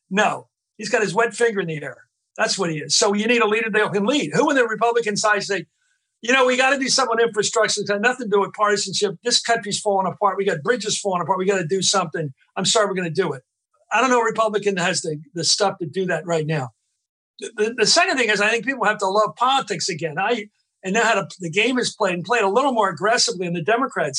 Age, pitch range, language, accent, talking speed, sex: 50-69, 190-235 Hz, English, American, 265 wpm, male